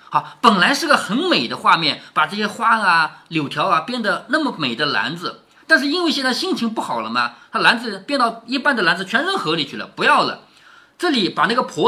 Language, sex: Chinese, male